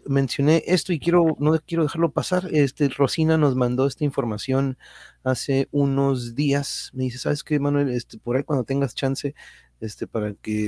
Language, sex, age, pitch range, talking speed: Spanish, male, 40-59, 120-145 Hz, 175 wpm